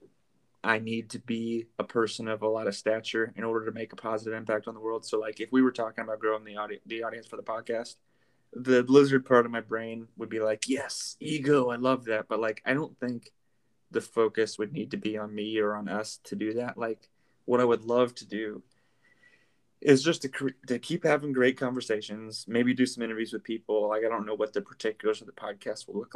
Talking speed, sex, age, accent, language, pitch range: 235 wpm, male, 20-39, American, English, 110-125 Hz